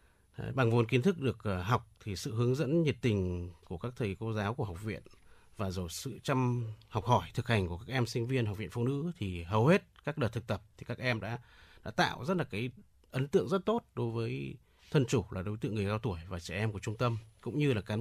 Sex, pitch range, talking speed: male, 95-135 Hz, 255 wpm